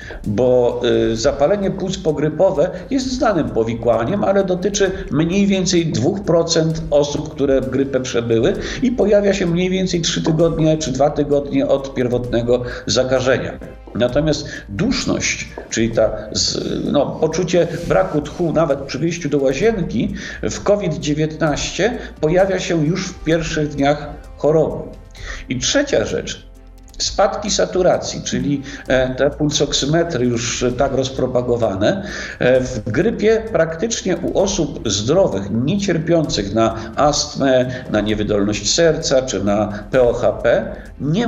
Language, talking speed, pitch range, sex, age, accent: Polish, 115 wpm, 125-170 Hz, male, 50-69, native